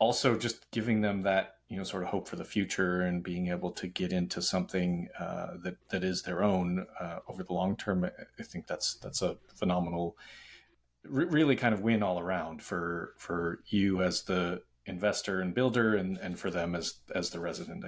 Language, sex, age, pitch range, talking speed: English, male, 30-49, 95-115 Hz, 200 wpm